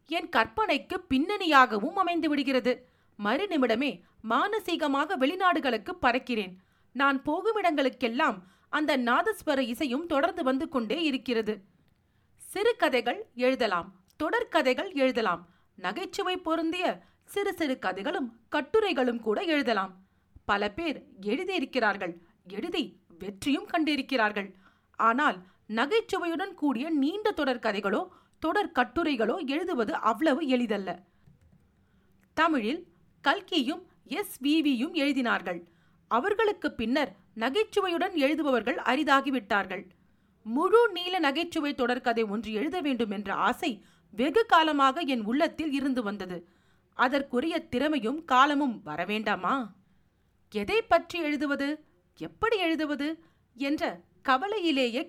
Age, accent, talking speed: 40-59, native, 90 wpm